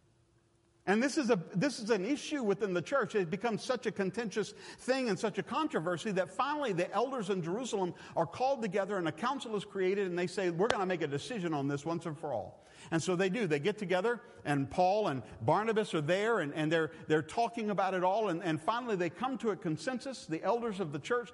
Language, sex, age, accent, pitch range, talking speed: English, male, 50-69, American, 170-230 Hz, 235 wpm